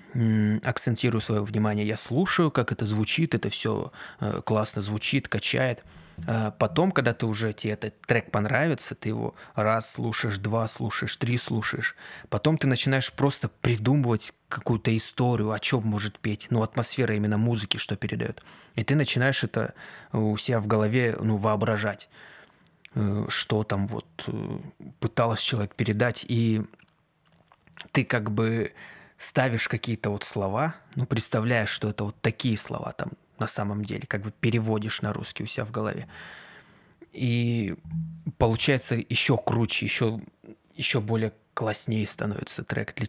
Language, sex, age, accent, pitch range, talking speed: Russian, male, 20-39, native, 105-125 Hz, 140 wpm